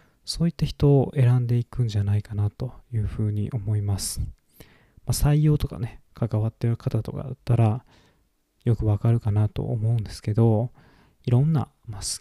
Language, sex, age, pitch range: Japanese, male, 20-39, 105-135 Hz